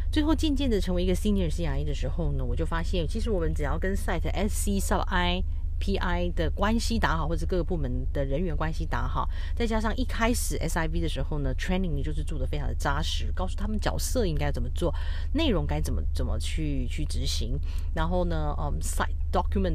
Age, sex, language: 40-59, female, Chinese